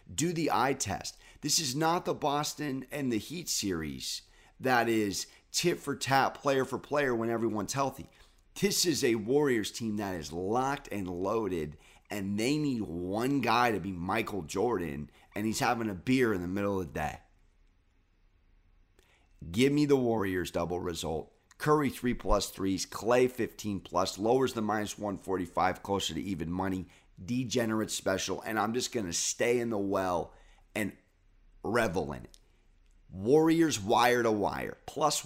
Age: 30-49